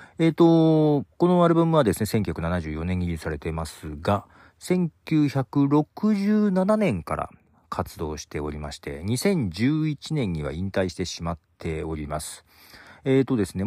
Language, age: Japanese, 40-59